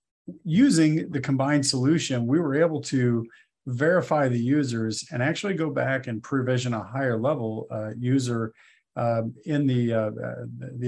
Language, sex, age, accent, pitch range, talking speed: English, male, 40-59, American, 115-140 Hz, 140 wpm